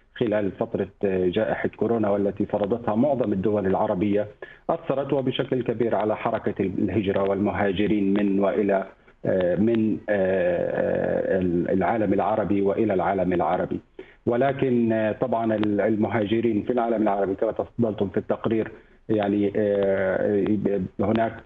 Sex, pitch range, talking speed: male, 100-110 Hz, 100 wpm